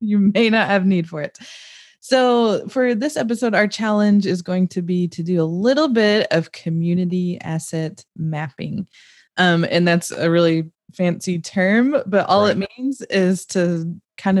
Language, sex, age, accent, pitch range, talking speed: English, female, 20-39, American, 165-200 Hz, 165 wpm